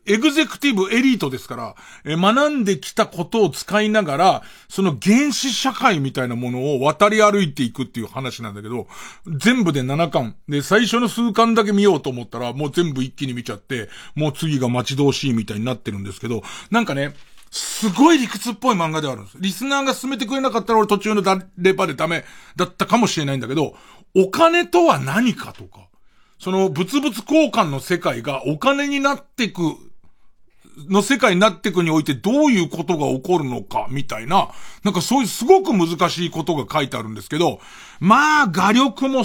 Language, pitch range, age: Japanese, 135-220 Hz, 40-59